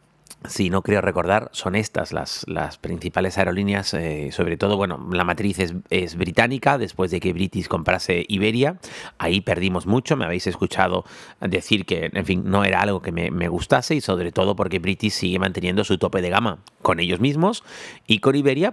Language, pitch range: Spanish, 95-115 Hz